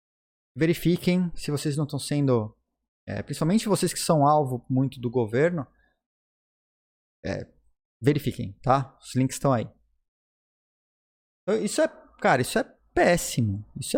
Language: Portuguese